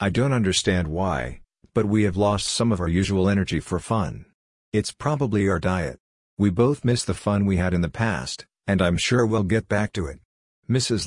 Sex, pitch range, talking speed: male, 90-105 Hz, 205 wpm